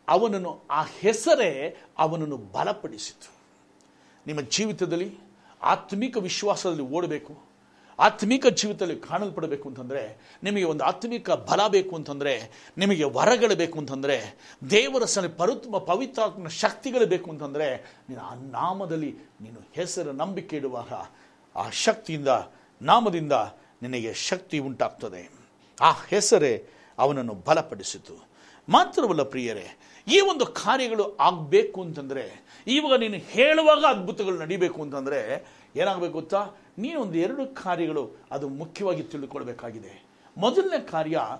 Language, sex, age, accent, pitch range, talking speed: Kannada, male, 60-79, native, 150-230 Hz, 105 wpm